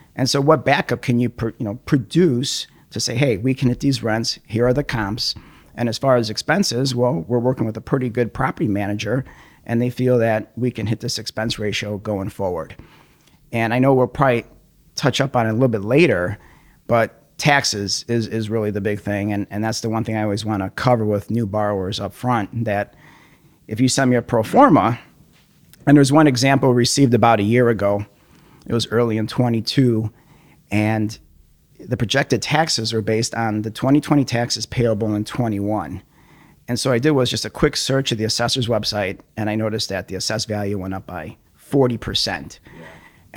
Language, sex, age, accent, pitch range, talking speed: English, male, 50-69, American, 110-135 Hz, 195 wpm